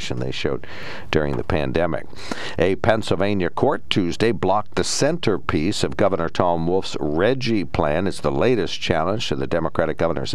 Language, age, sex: English, 60-79, male